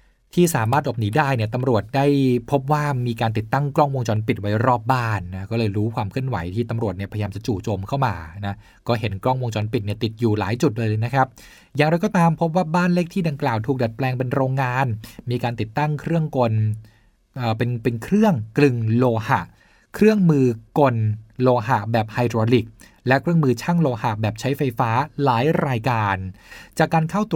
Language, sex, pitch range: Thai, male, 110-140 Hz